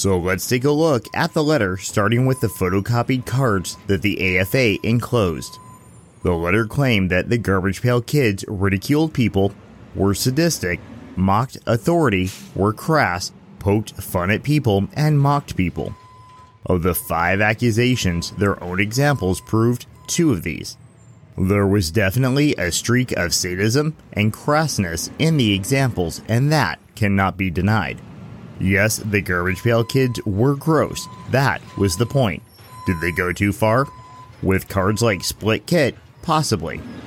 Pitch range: 95-125 Hz